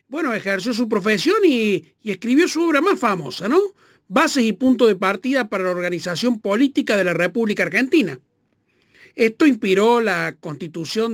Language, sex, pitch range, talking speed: Spanish, male, 180-250 Hz, 155 wpm